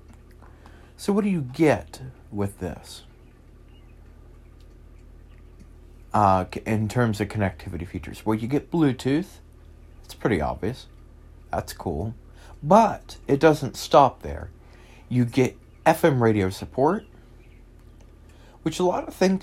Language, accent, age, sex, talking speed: English, American, 40-59, male, 115 wpm